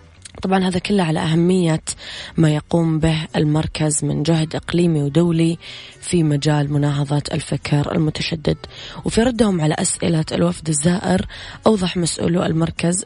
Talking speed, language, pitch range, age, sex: 125 wpm, English, 145-175 Hz, 20-39, female